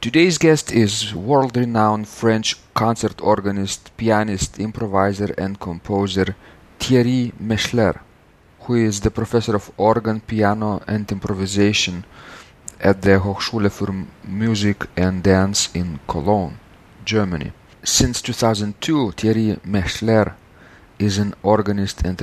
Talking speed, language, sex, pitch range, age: 110 wpm, English, male, 90-110 Hz, 40-59